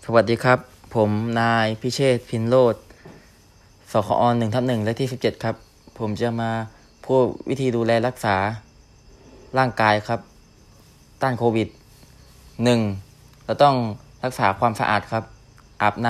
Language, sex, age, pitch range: Thai, male, 20-39, 105-125 Hz